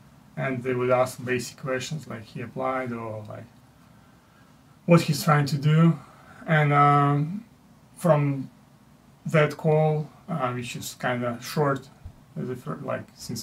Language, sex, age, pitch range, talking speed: English, male, 30-49, 120-140 Hz, 130 wpm